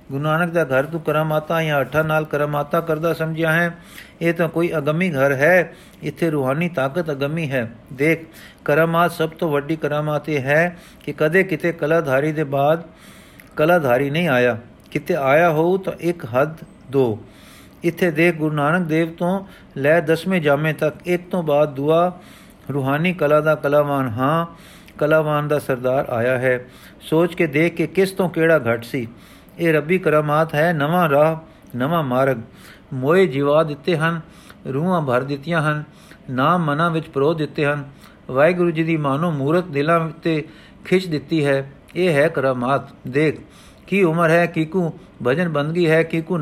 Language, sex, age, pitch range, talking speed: Punjabi, male, 50-69, 140-170 Hz, 170 wpm